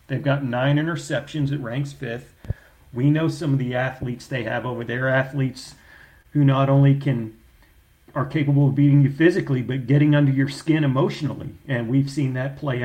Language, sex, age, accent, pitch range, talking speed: English, male, 40-59, American, 130-150 Hz, 180 wpm